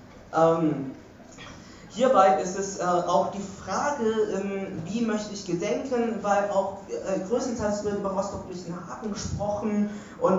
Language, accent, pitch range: German, German, 170-210 Hz